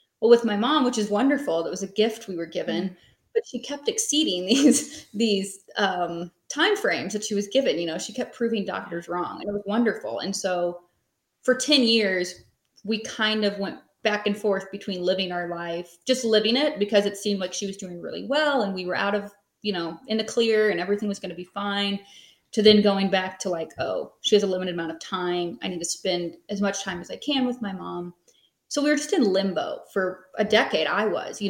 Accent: American